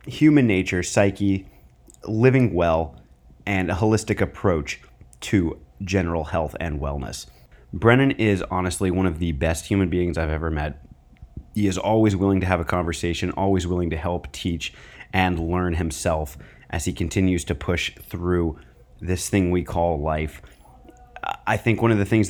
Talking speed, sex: 160 wpm, male